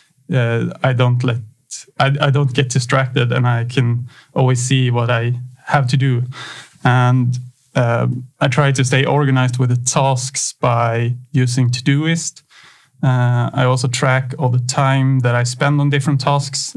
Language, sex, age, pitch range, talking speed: Swedish, male, 30-49, 125-135 Hz, 160 wpm